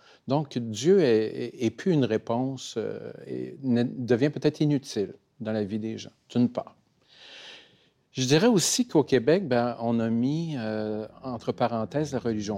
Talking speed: 155 wpm